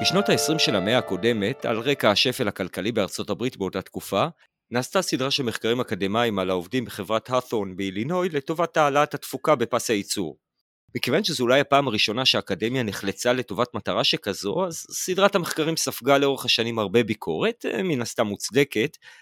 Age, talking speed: 30-49, 150 wpm